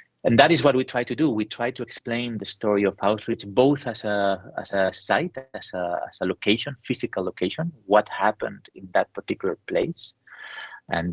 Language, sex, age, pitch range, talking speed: English, male, 30-49, 90-120 Hz, 195 wpm